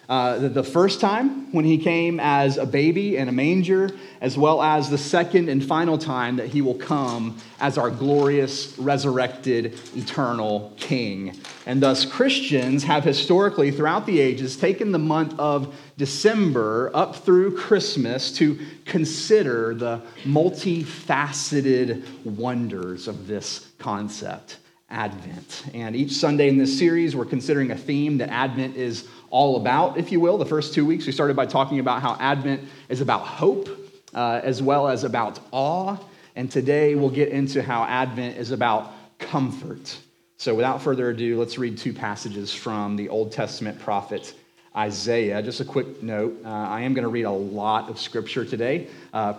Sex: male